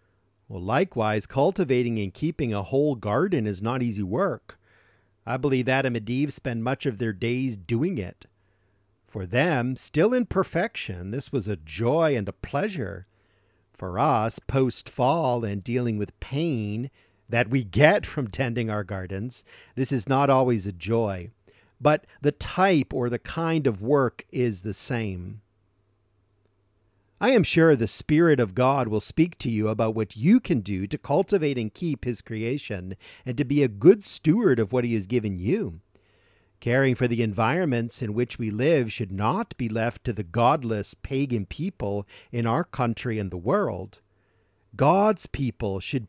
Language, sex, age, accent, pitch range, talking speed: English, male, 50-69, American, 105-135 Hz, 165 wpm